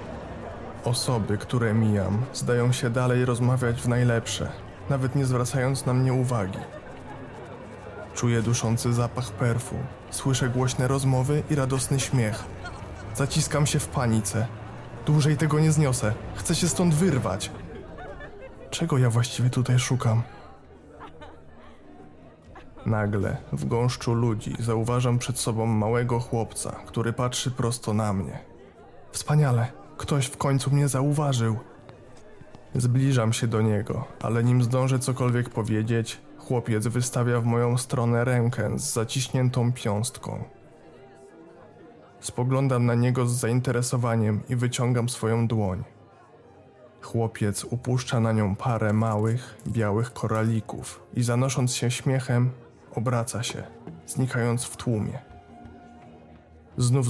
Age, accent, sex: 20-39, native, male